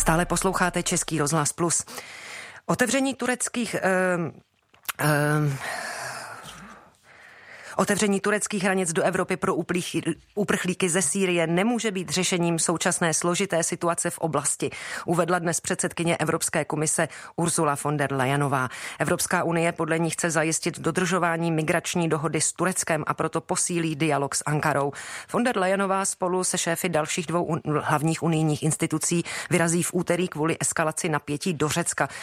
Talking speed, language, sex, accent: 130 wpm, Czech, female, native